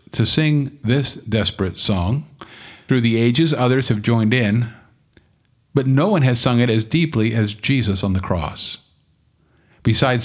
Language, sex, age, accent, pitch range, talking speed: English, male, 50-69, American, 105-135 Hz, 150 wpm